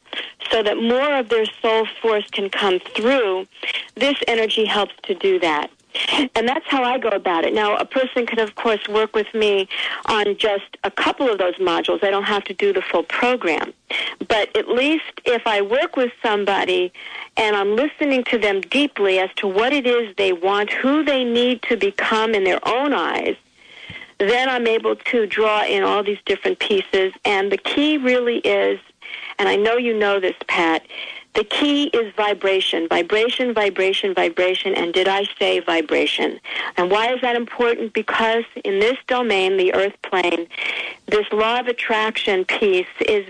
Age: 50-69